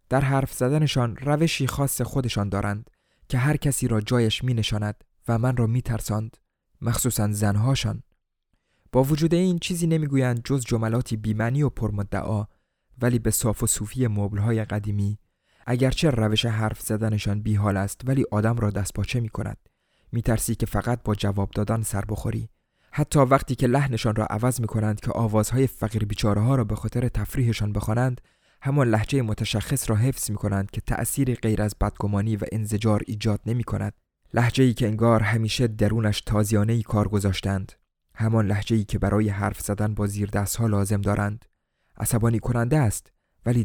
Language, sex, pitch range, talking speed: Persian, male, 105-125 Hz, 160 wpm